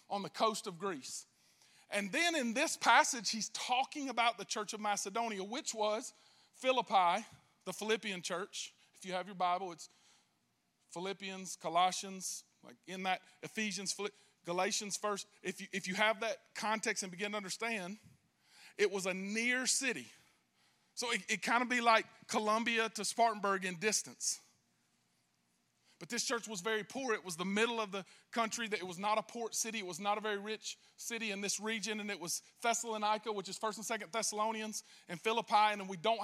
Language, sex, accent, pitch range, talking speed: English, male, American, 195-235 Hz, 185 wpm